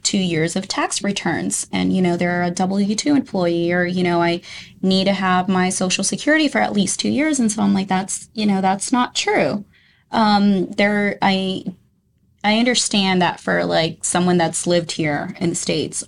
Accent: American